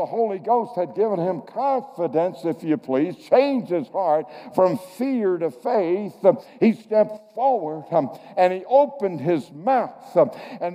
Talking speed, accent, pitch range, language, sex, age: 145 wpm, American, 185-235 Hz, English, male, 60-79